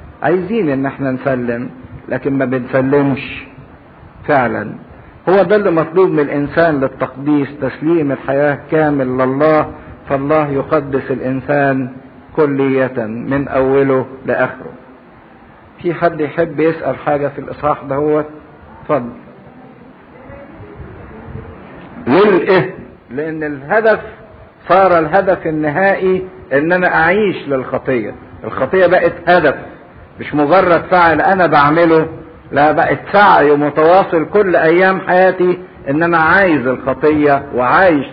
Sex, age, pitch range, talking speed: male, 50-69, 135-180 Hz, 100 wpm